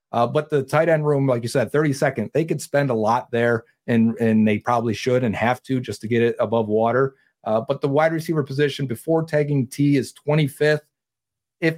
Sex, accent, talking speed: male, American, 215 wpm